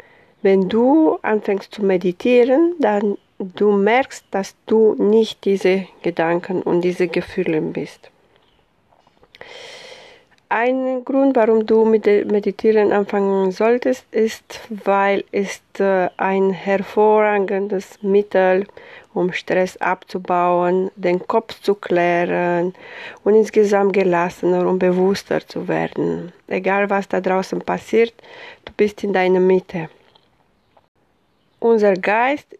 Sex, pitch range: female, 190-230 Hz